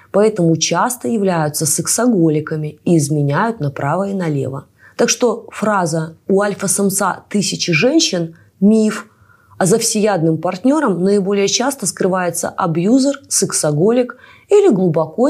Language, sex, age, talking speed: Russian, female, 20-39, 110 wpm